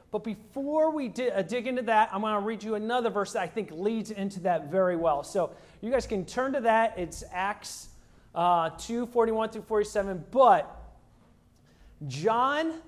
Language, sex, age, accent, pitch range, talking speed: English, male, 30-49, American, 170-235 Hz, 170 wpm